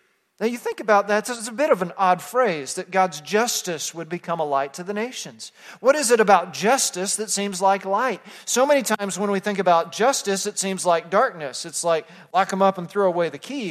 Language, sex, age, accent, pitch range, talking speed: English, male, 40-59, American, 180-230 Hz, 230 wpm